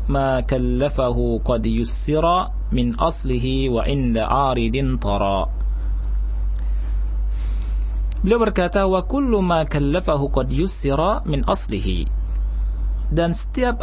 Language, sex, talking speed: Malay, male, 80 wpm